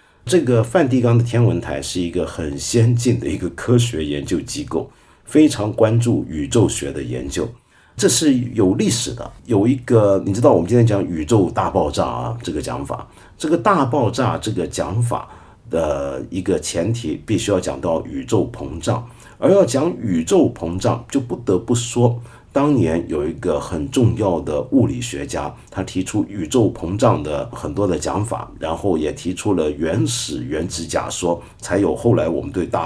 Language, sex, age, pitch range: Chinese, male, 50-69, 90-120 Hz